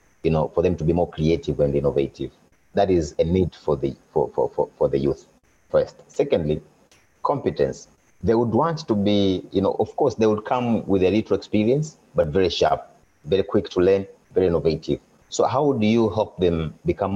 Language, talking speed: English, 200 wpm